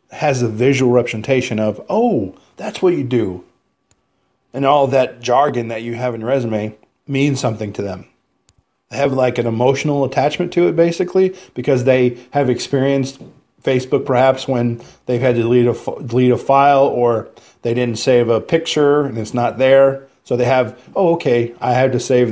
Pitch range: 120-140 Hz